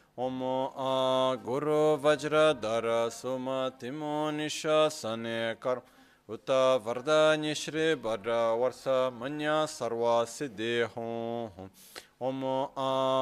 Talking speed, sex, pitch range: 75 wpm, male, 115-150 Hz